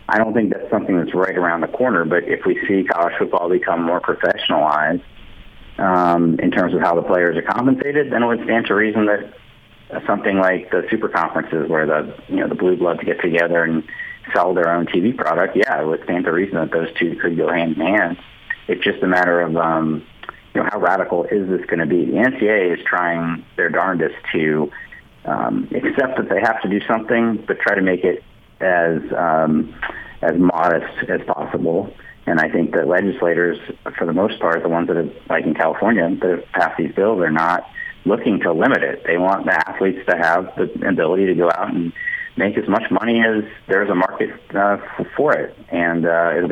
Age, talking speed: 40-59, 210 wpm